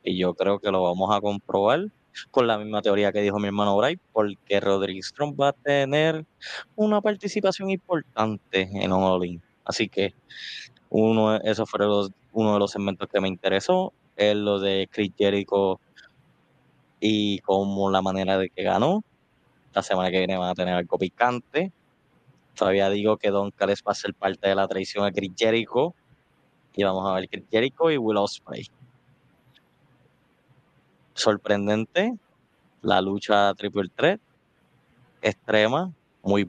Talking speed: 150 wpm